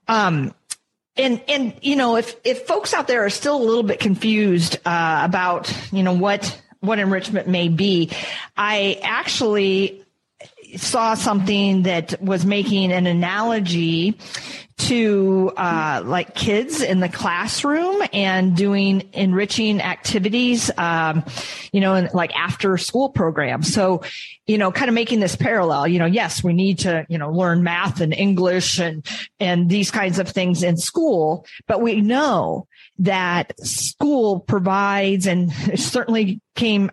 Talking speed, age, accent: 145 wpm, 40-59, American